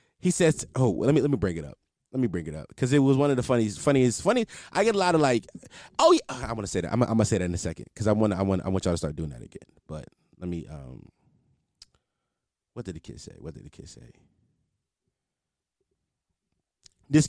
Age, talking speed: 20-39, 255 wpm